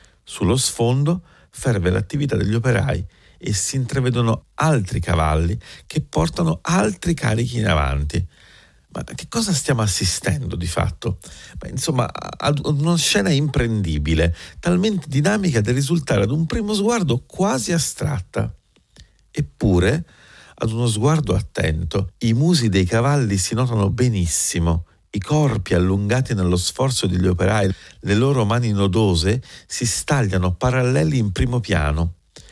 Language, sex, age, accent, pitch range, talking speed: Italian, male, 50-69, native, 90-145 Hz, 130 wpm